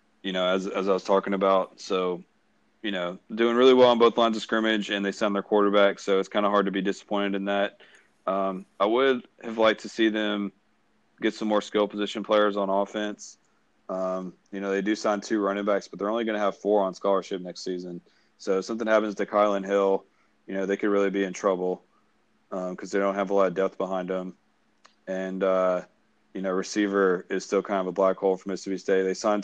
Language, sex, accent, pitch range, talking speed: English, male, American, 95-105 Hz, 230 wpm